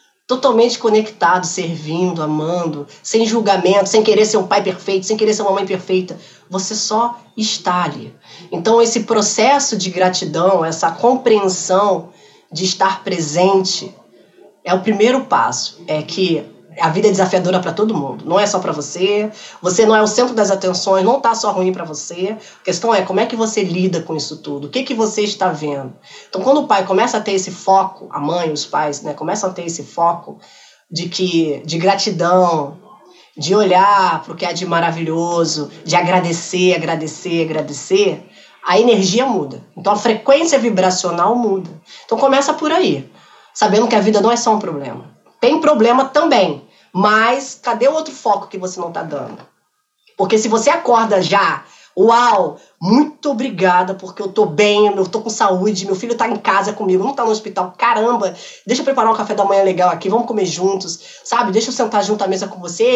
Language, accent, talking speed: Portuguese, Brazilian, 190 wpm